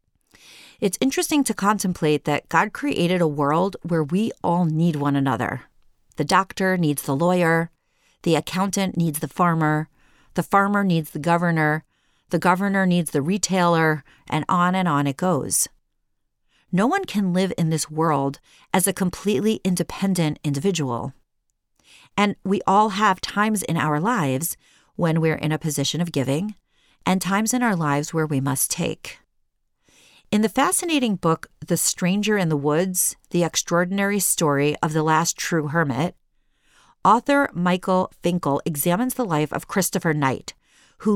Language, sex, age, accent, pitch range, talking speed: English, female, 40-59, American, 155-195 Hz, 150 wpm